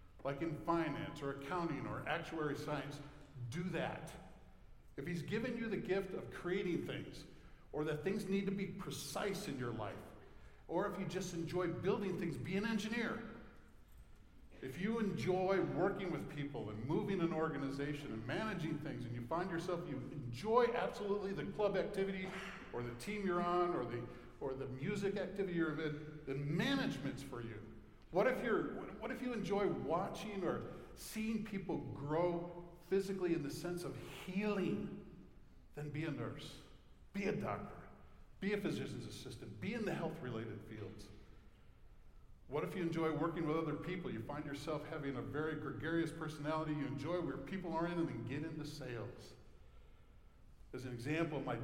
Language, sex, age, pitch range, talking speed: English, male, 50-69, 140-190 Hz, 165 wpm